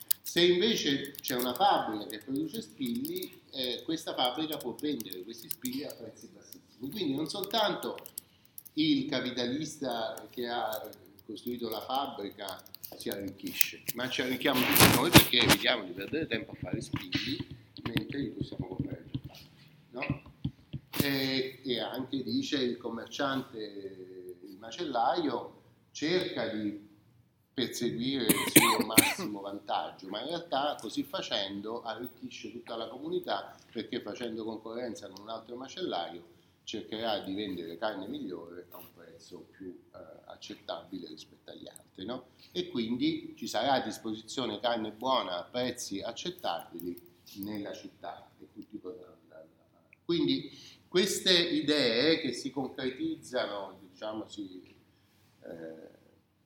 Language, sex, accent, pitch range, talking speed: Italian, male, native, 105-155 Hz, 125 wpm